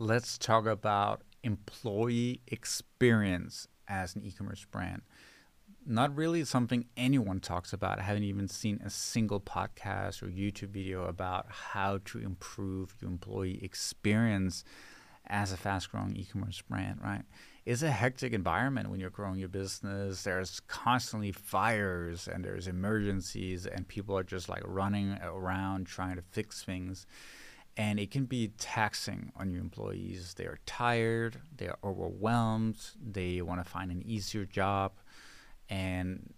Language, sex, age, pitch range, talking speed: English, male, 30-49, 95-110 Hz, 140 wpm